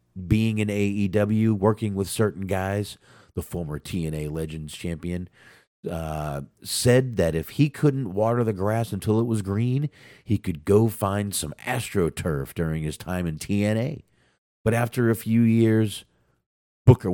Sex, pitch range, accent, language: male, 80-110 Hz, American, English